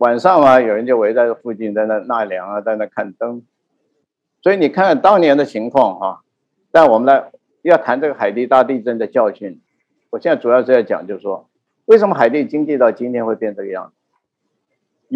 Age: 50-69